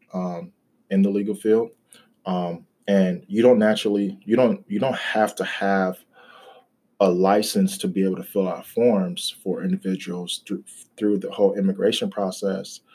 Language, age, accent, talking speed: English, 20-39, American, 160 wpm